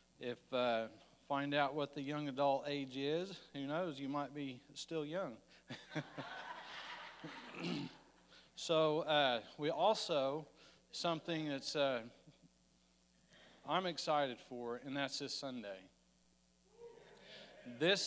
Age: 40-59